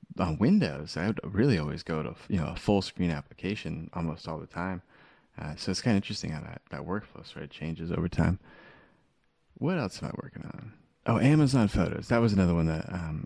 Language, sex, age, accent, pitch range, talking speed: English, male, 20-39, American, 85-100 Hz, 220 wpm